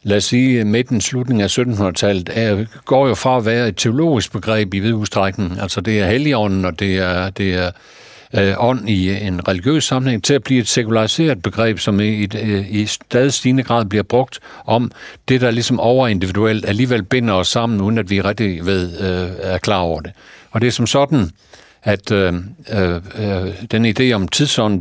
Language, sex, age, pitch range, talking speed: Danish, male, 60-79, 100-125 Hz, 185 wpm